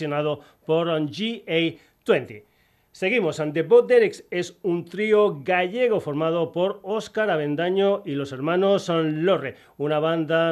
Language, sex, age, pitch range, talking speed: Spanish, male, 40-59, 155-185 Hz, 120 wpm